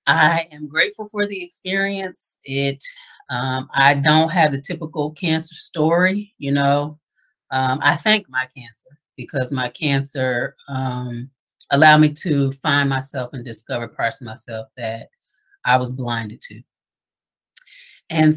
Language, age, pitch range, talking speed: English, 40-59, 130-160 Hz, 135 wpm